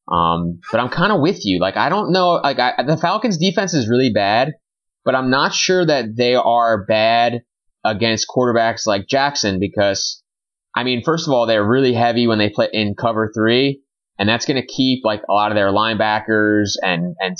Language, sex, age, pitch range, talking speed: English, male, 20-39, 95-125 Hz, 205 wpm